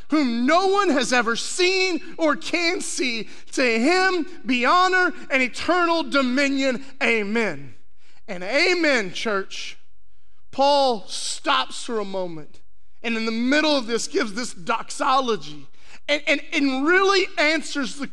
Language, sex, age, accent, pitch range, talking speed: English, male, 30-49, American, 245-370 Hz, 130 wpm